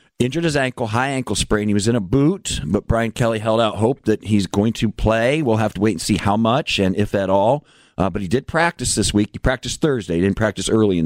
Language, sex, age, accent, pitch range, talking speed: English, male, 50-69, American, 90-110 Hz, 265 wpm